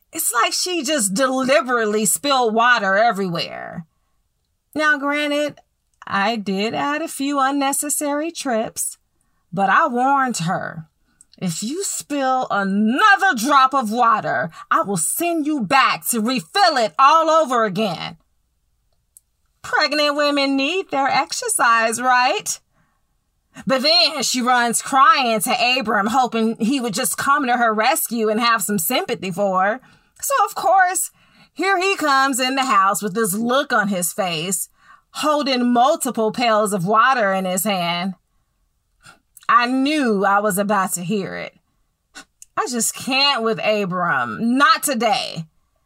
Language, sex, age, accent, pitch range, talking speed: English, female, 30-49, American, 215-300 Hz, 135 wpm